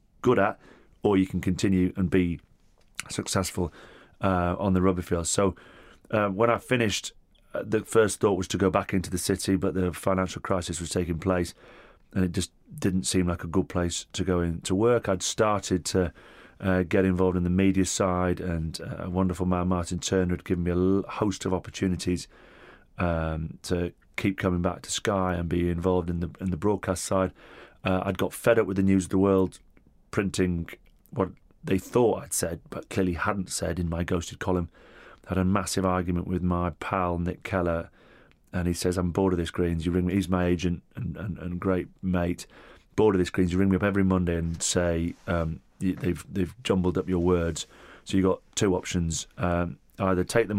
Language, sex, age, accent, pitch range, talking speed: English, male, 30-49, British, 90-95 Hz, 205 wpm